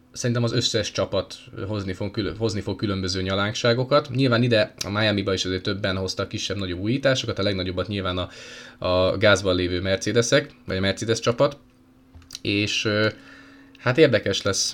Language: Hungarian